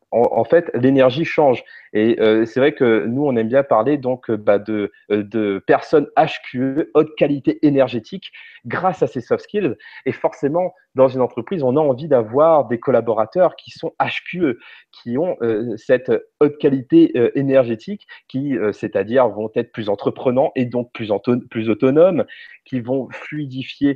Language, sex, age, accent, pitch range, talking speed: French, male, 30-49, French, 115-160 Hz, 170 wpm